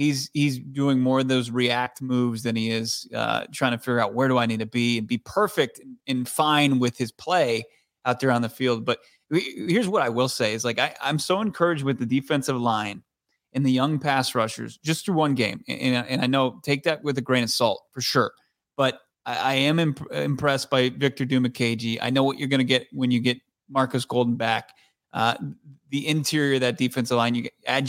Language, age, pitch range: English, 30-49, 125-145 Hz